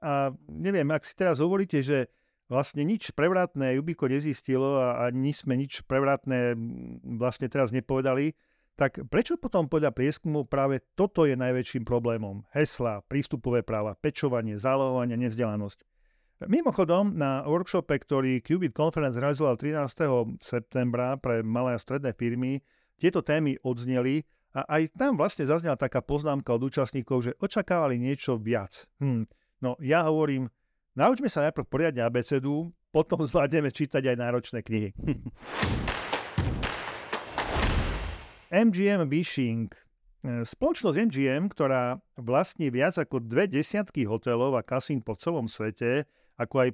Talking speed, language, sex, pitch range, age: 130 wpm, Slovak, male, 120-155 Hz, 40-59